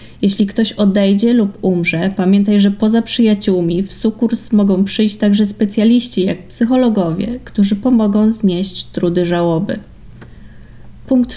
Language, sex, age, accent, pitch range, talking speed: Polish, female, 20-39, native, 190-225 Hz, 120 wpm